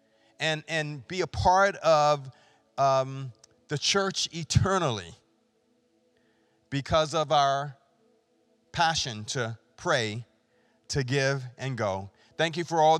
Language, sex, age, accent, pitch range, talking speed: English, male, 40-59, American, 130-155 Hz, 110 wpm